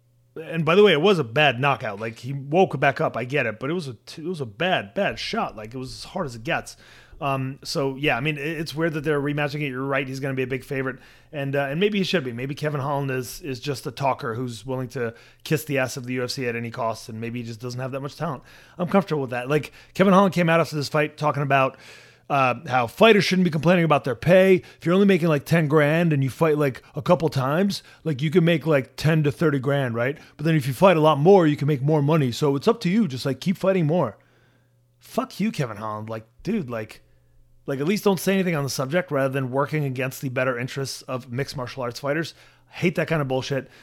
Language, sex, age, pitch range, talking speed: English, male, 30-49, 130-160 Hz, 265 wpm